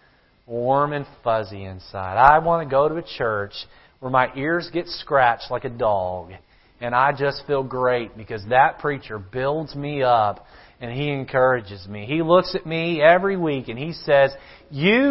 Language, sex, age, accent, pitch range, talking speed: English, male, 40-59, American, 125-170 Hz, 175 wpm